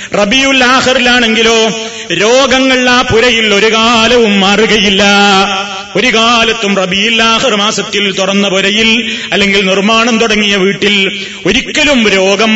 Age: 30-49